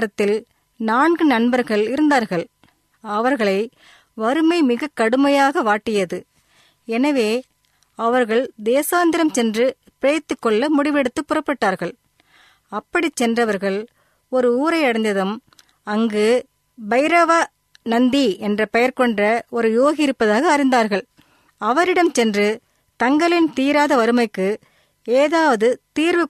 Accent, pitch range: native, 225-295 Hz